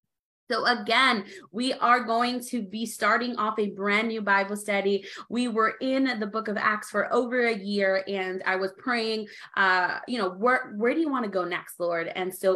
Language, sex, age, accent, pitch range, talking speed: English, female, 20-39, American, 195-245 Hz, 205 wpm